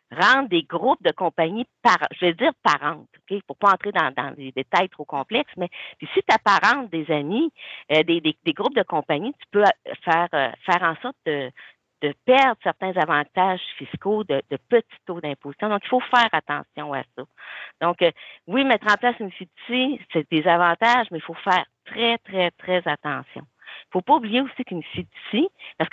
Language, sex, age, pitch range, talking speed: French, female, 50-69, 160-235 Hz, 200 wpm